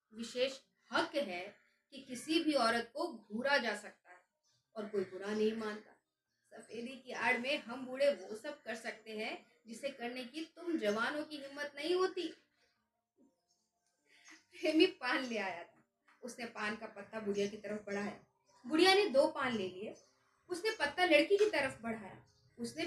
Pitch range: 230-330 Hz